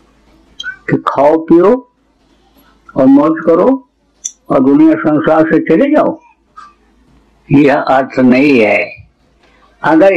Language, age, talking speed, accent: Hindi, 60-79, 85 wpm, native